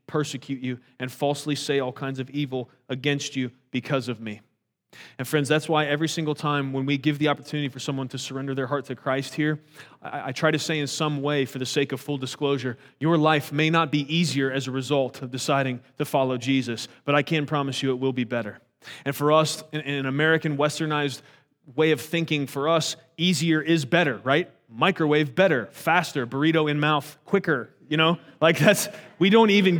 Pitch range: 140-180 Hz